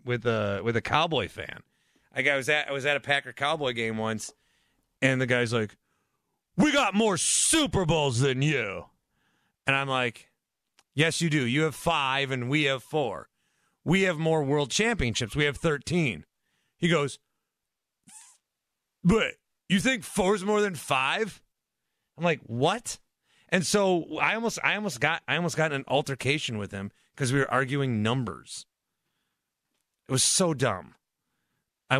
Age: 40-59